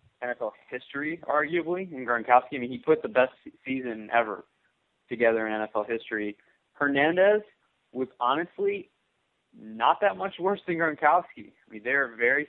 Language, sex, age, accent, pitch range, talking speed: English, male, 20-39, American, 110-135 Hz, 145 wpm